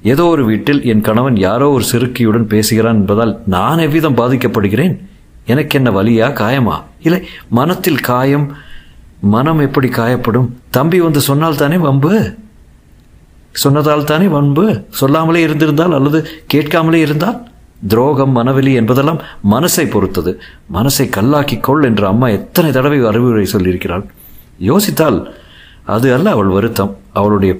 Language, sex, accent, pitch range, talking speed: Tamil, male, native, 110-150 Hz, 120 wpm